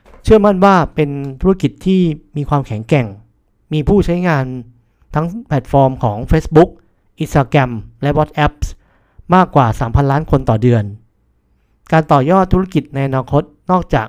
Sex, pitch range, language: male, 115-160 Hz, Thai